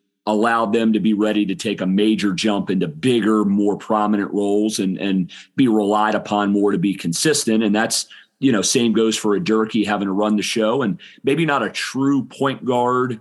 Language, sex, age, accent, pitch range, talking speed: English, male, 40-59, American, 100-120 Hz, 205 wpm